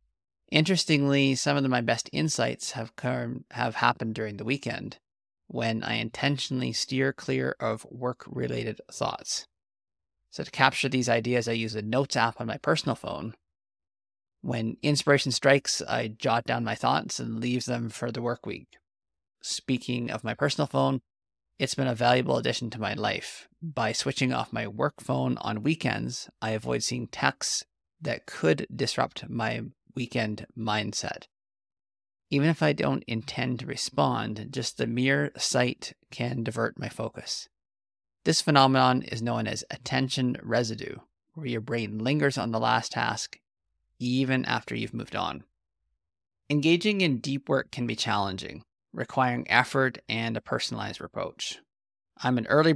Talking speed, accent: 150 wpm, American